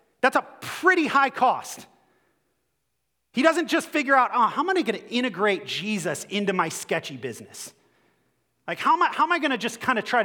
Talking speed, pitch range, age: 185 wpm, 150-225 Hz, 30-49